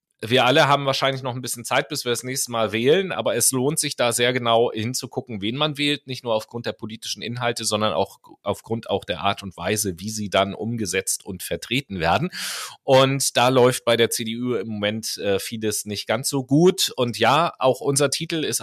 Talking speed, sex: 215 wpm, male